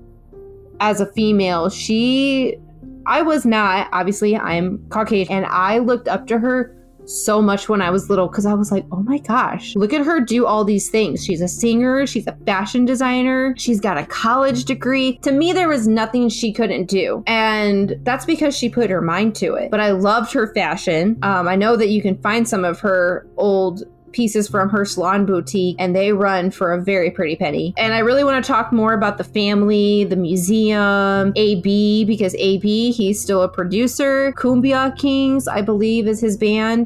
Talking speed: 195 wpm